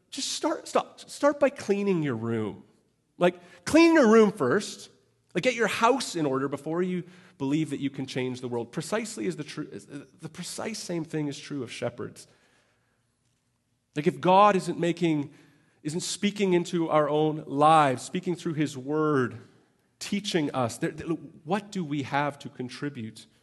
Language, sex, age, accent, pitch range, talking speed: English, male, 40-59, American, 120-155 Hz, 160 wpm